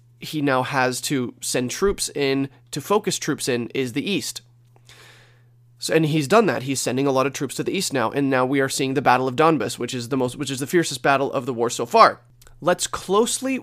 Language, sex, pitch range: English, male, 125-155 Hz